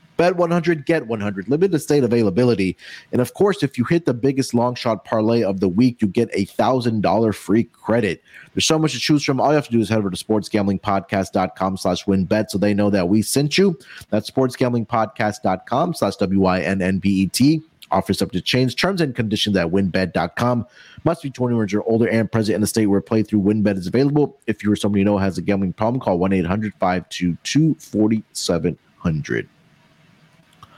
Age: 30-49